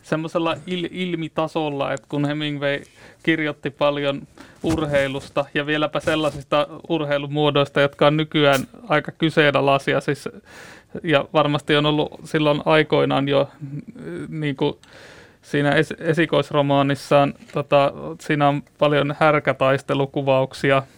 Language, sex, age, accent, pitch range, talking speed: Finnish, male, 30-49, native, 140-150 Hz, 100 wpm